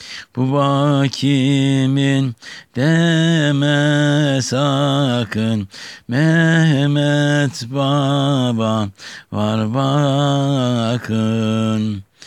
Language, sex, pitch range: Turkish, male, 110-140 Hz